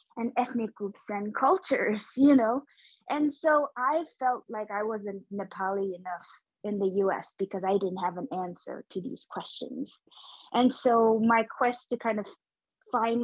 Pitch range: 200-250 Hz